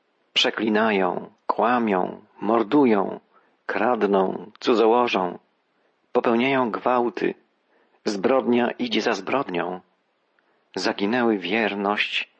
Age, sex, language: 40-59, male, Polish